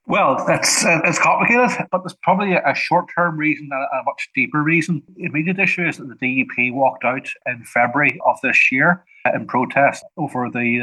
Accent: Irish